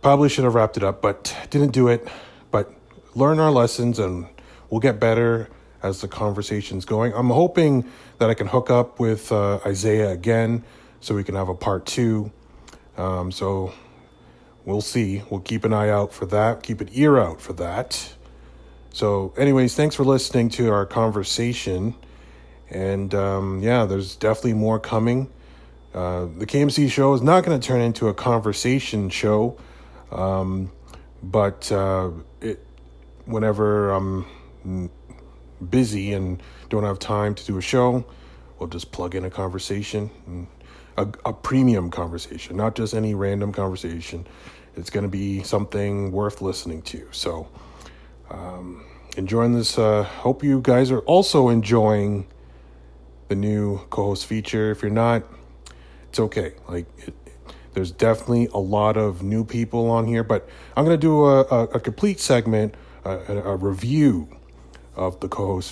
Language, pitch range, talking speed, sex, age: English, 90-115 Hz, 155 wpm, male, 30-49